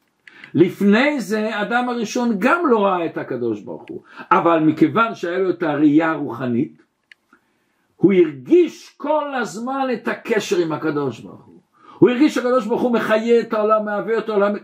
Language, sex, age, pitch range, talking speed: Hebrew, male, 60-79, 175-260 Hz, 160 wpm